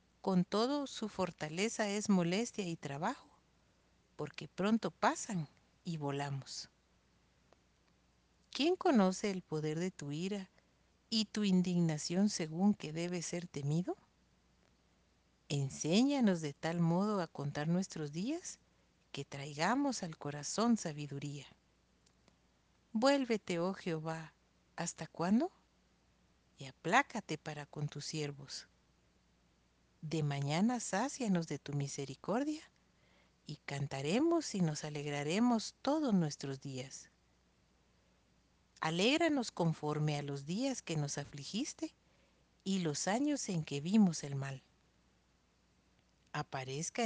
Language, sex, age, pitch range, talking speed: Spanish, female, 50-69, 145-210 Hz, 105 wpm